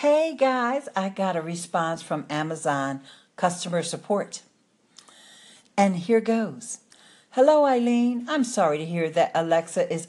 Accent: American